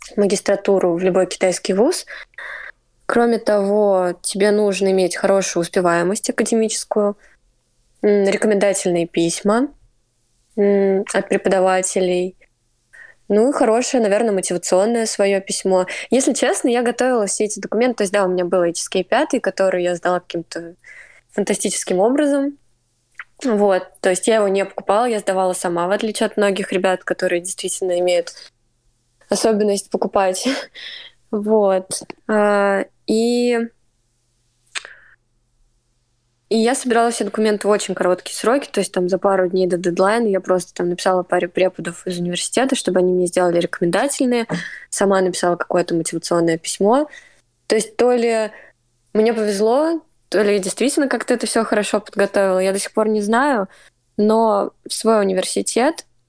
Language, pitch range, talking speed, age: Russian, 180-220 Hz, 135 wpm, 20-39